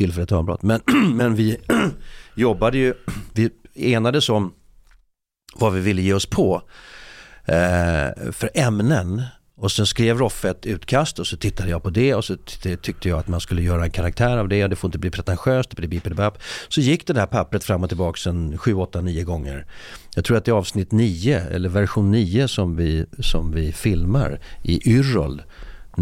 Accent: native